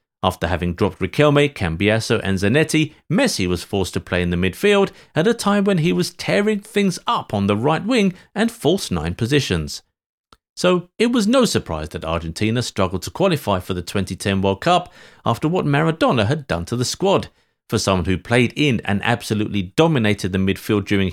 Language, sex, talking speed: English, male, 185 wpm